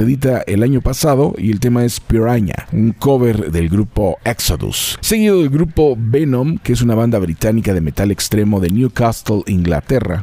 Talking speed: 170 wpm